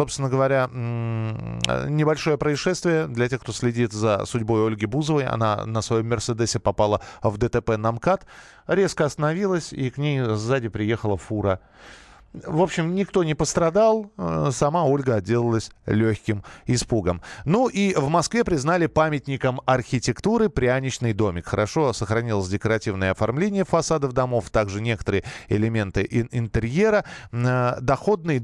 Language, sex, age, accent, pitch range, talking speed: Russian, male, 20-39, native, 115-165 Hz, 125 wpm